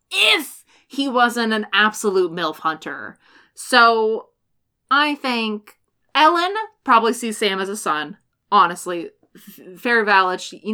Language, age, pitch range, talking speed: English, 20-39, 180-230 Hz, 125 wpm